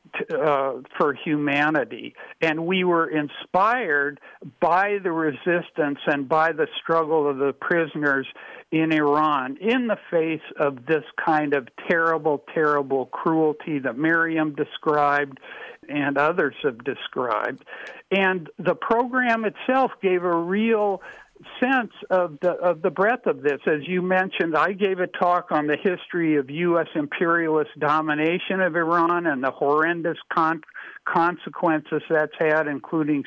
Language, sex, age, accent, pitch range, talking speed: English, male, 60-79, American, 150-180 Hz, 135 wpm